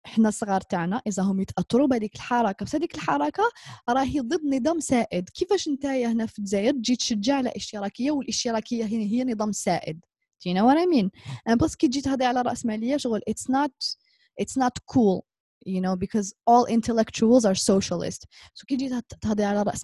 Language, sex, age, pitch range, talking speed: Arabic, female, 20-39, 195-250 Hz, 125 wpm